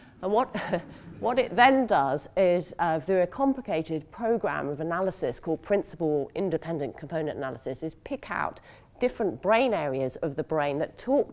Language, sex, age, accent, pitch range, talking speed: English, female, 40-59, British, 150-195 Hz, 160 wpm